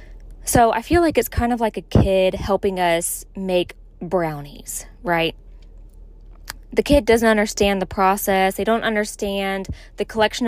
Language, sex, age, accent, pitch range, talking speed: English, female, 20-39, American, 190-225 Hz, 150 wpm